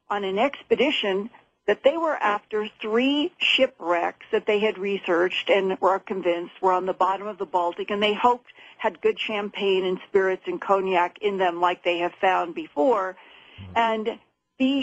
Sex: female